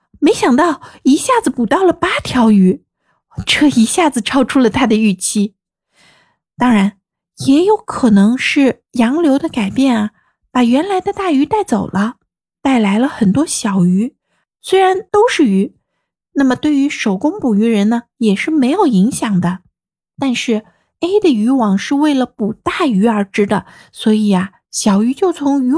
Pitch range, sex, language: 210-295 Hz, female, Chinese